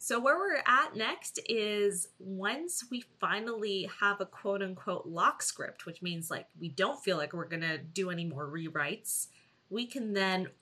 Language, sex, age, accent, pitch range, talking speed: English, female, 20-39, American, 170-215 Hz, 180 wpm